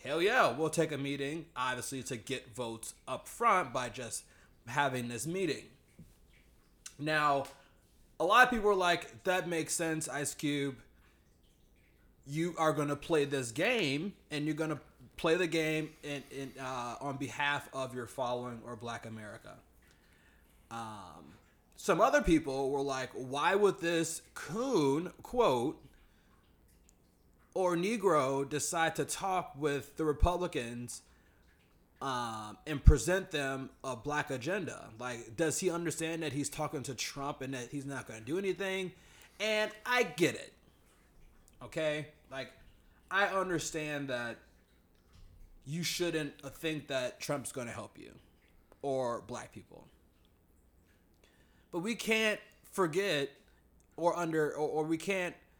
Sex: male